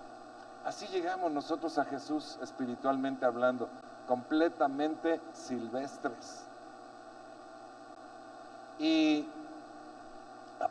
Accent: Mexican